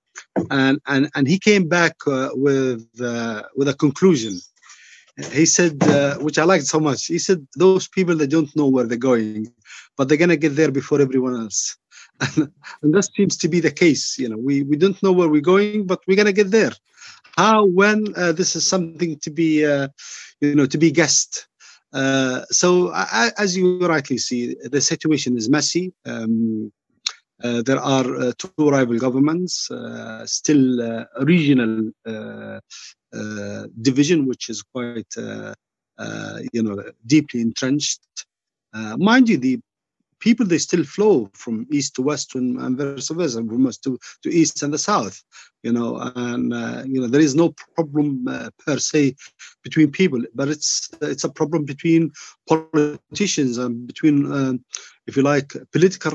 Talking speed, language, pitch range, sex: 170 wpm, English, 125-165 Hz, male